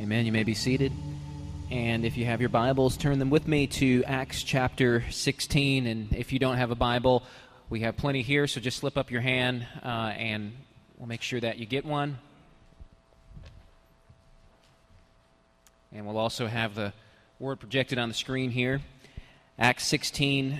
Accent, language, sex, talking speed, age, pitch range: American, English, male, 170 wpm, 30-49, 110-140 Hz